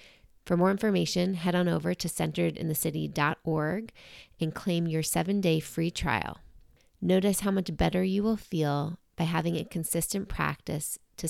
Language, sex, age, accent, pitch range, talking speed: English, female, 30-49, American, 150-195 Hz, 145 wpm